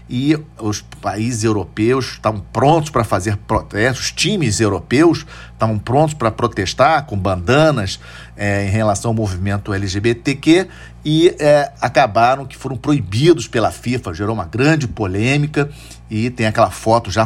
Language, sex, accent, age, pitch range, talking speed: Portuguese, male, Brazilian, 50-69, 105-130 Hz, 140 wpm